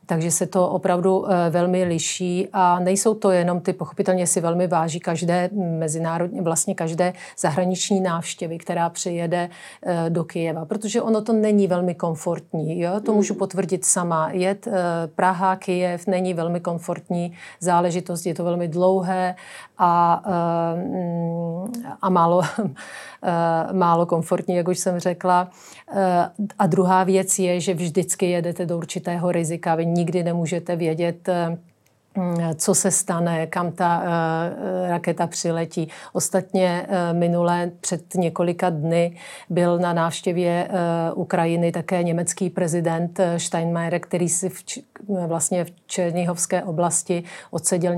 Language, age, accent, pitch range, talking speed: Czech, 40-59, native, 170-190 Hz, 125 wpm